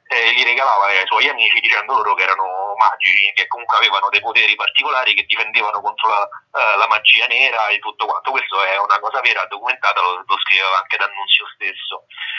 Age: 30-49